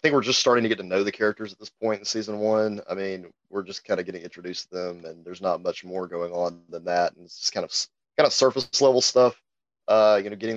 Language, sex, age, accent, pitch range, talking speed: English, male, 30-49, American, 95-115 Hz, 285 wpm